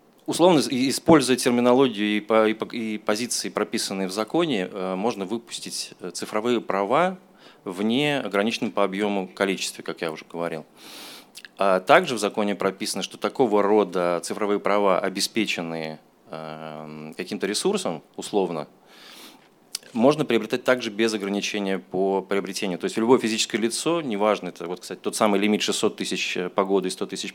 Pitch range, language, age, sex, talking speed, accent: 95-115 Hz, Russian, 20-39, male, 130 wpm, native